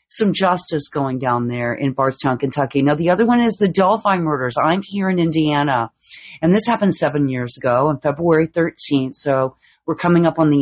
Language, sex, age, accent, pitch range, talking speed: English, female, 40-59, American, 145-190 Hz, 200 wpm